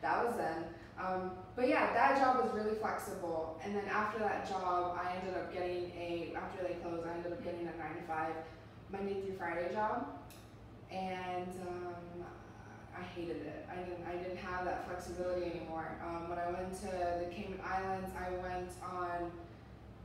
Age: 20-39